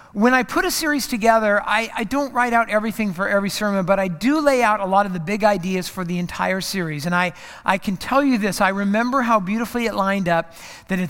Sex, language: male, English